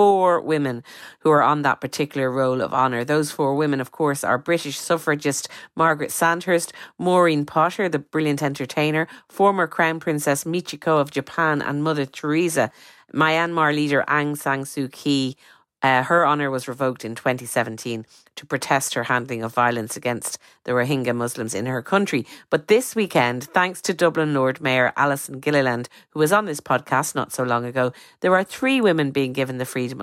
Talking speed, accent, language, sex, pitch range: 175 wpm, Irish, English, female, 135-160 Hz